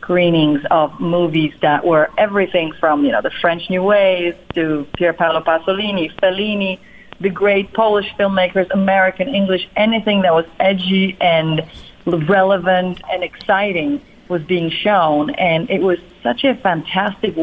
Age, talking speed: 40-59, 140 wpm